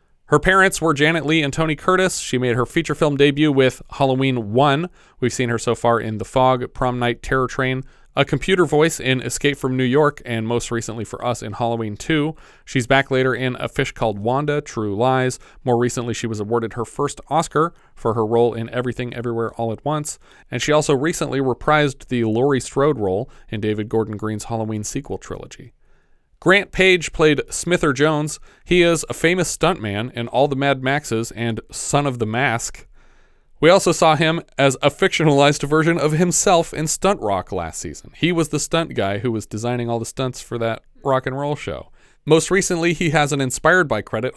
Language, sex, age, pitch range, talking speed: English, male, 30-49, 115-150 Hz, 200 wpm